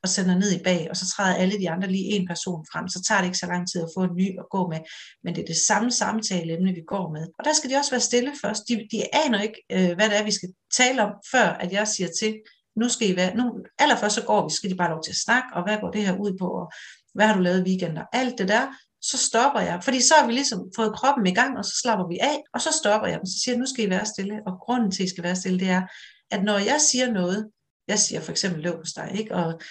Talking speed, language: 300 wpm, Danish